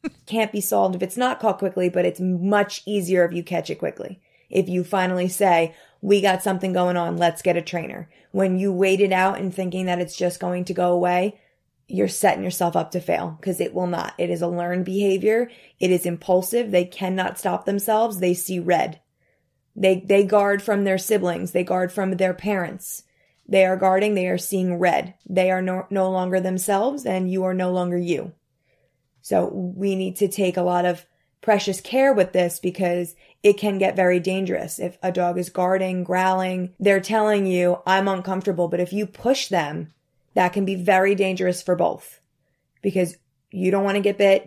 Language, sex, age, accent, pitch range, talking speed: English, female, 20-39, American, 180-195 Hz, 200 wpm